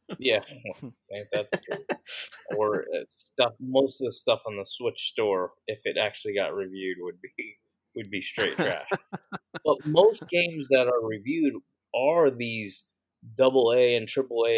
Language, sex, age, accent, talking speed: English, male, 20-39, American, 145 wpm